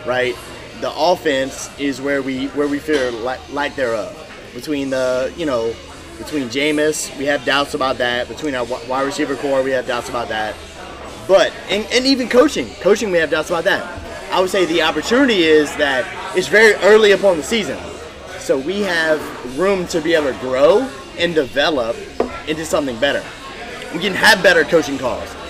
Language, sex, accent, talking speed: English, male, American, 185 wpm